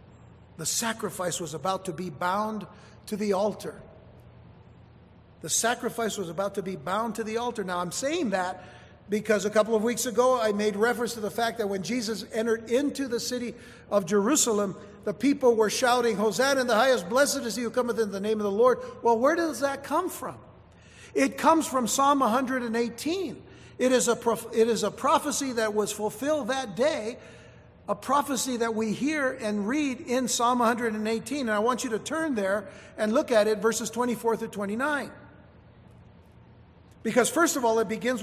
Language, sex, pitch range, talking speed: English, male, 210-260 Hz, 180 wpm